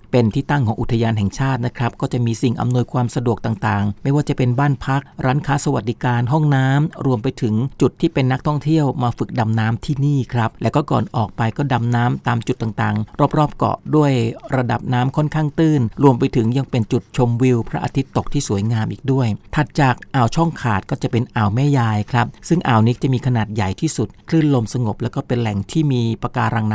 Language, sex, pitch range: Thai, male, 115-140 Hz